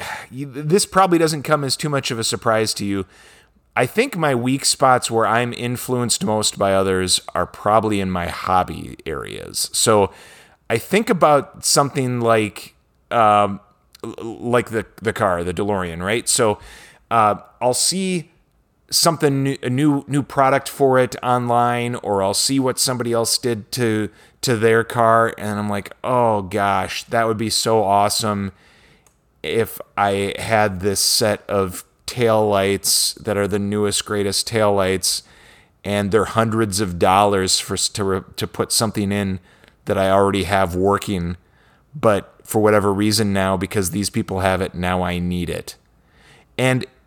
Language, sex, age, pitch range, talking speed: English, male, 30-49, 100-125 Hz, 155 wpm